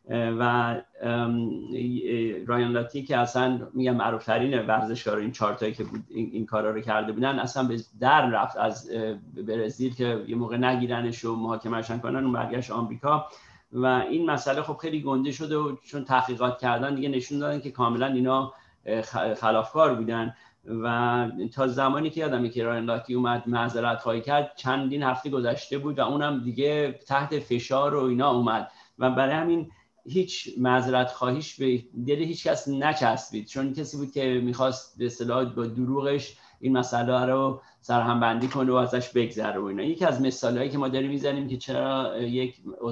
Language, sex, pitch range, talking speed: Persian, male, 115-135 Hz, 155 wpm